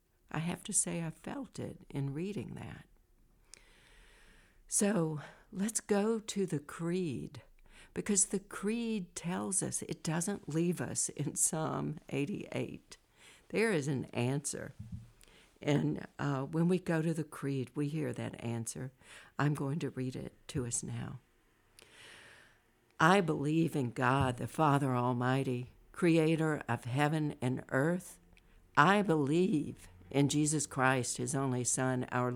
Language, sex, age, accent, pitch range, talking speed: English, female, 60-79, American, 130-185 Hz, 135 wpm